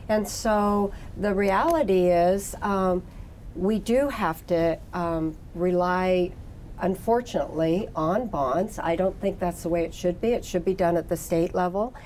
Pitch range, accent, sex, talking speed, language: 170-210 Hz, American, female, 160 wpm, English